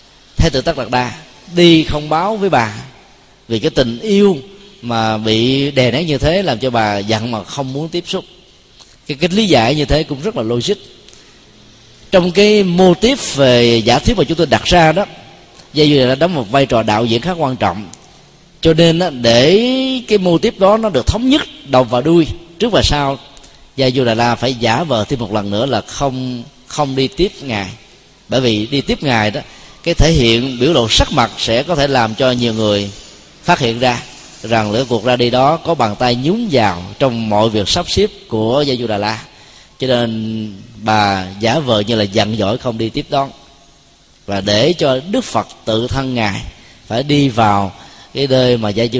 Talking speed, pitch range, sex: 210 wpm, 110-150 Hz, male